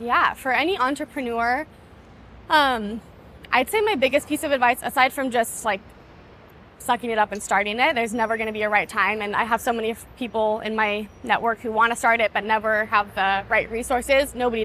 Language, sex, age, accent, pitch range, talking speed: English, female, 20-39, American, 215-255 Hz, 210 wpm